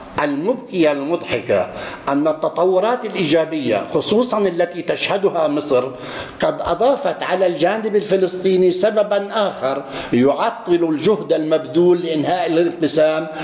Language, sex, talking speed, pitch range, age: English, male, 95 wpm, 150-190 Hz, 60-79